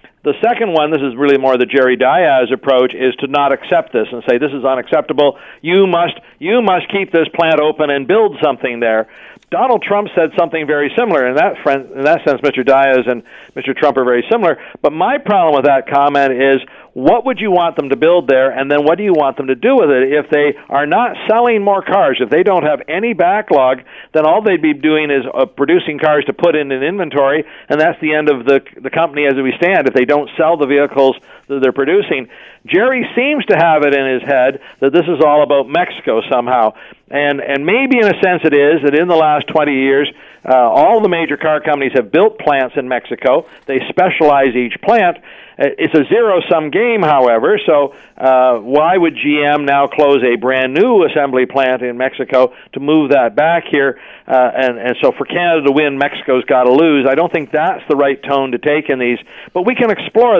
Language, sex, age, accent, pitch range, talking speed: English, male, 50-69, American, 135-170 Hz, 220 wpm